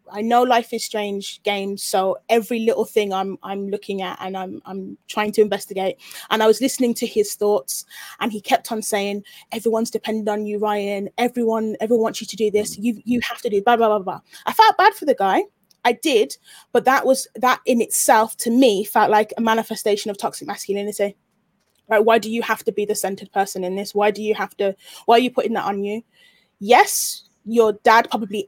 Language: English